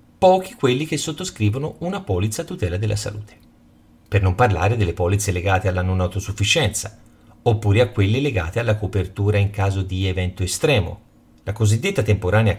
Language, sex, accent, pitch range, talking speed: Italian, male, native, 95-125 Hz, 155 wpm